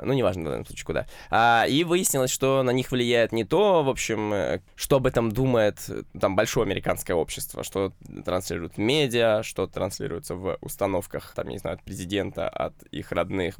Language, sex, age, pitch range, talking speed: Russian, male, 20-39, 95-125 Hz, 170 wpm